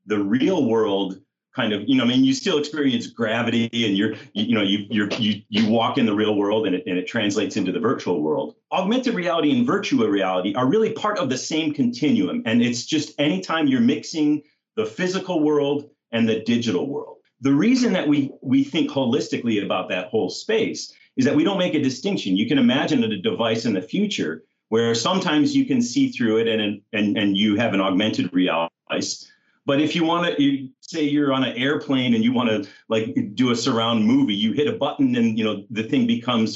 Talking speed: 220 wpm